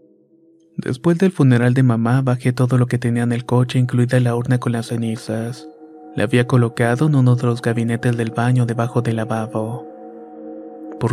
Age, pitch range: 30-49, 115-125 Hz